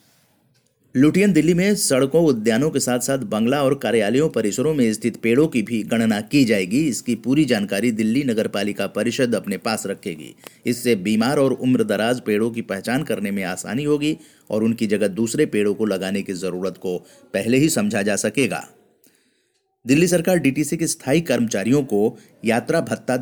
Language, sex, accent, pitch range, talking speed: Hindi, male, native, 105-140 Hz, 165 wpm